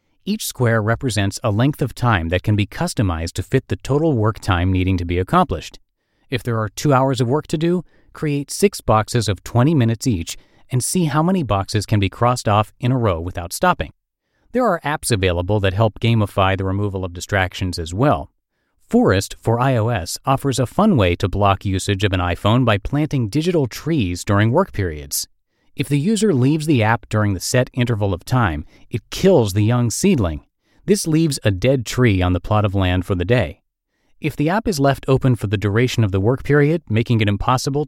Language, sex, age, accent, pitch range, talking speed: English, male, 40-59, American, 100-140 Hz, 205 wpm